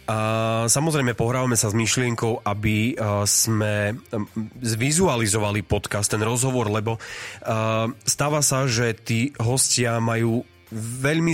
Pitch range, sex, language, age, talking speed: 110-135 Hz, male, Slovak, 30-49, 125 wpm